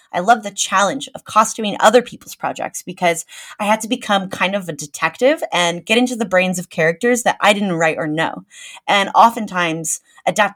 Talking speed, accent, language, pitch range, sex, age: 195 wpm, American, English, 180-245 Hz, female, 20-39